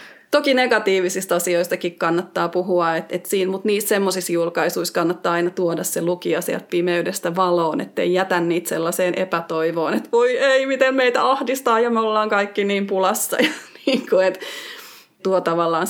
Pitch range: 180-230 Hz